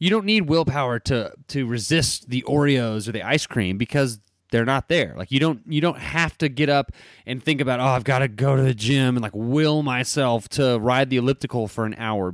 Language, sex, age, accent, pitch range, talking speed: English, male, 30-49, American, 100-135 Hz, 235 wpm